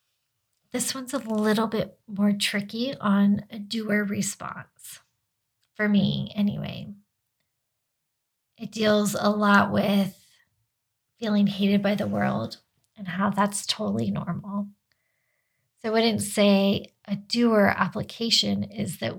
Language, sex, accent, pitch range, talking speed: English, female, American, 130-210 Hz, 120 wpm